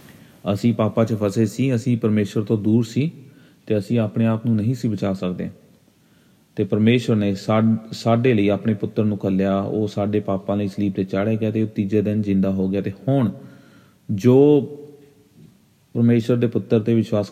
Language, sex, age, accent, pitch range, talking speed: English, male, 30-49, Indian, 100-115 Hz, 180 wpm